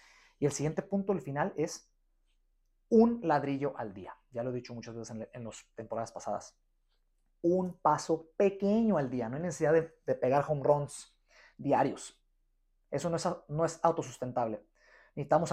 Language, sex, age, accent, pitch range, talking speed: Spanish, male, 30-49, Mexican, 130-175 Hz, 160 wpm